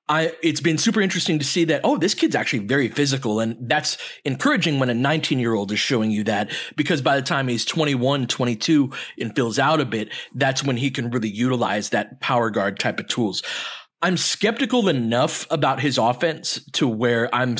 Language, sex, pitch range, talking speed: English, male, 125-165 Hz, 200 wpm